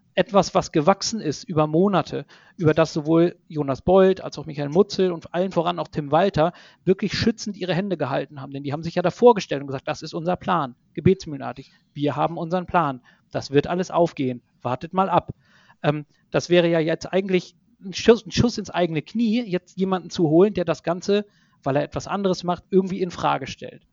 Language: German